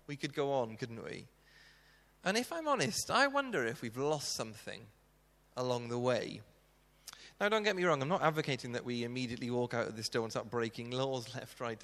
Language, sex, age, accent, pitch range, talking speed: English, male, 30-49, British, 125-160 Hz, 210 wpm